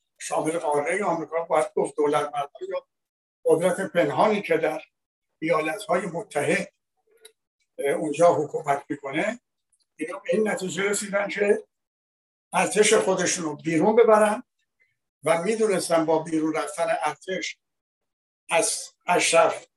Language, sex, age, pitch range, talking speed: Persian, male, 60-79, 160-220 Hz, 100 wpm